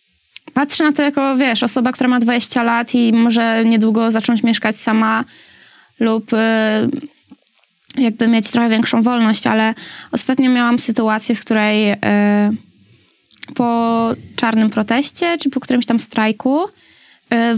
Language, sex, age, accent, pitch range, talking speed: Polish, female, 20-39, native, 215-245 Hz, 135 wpm